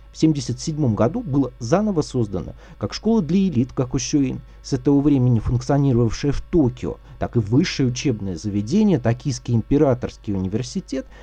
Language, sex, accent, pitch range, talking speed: Russian, male, native, 110-155 Hz, 135 wpm